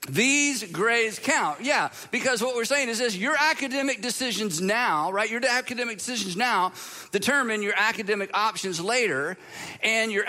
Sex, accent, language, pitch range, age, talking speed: male, American, English, 195-250 Hz, 50-69, 150 wpm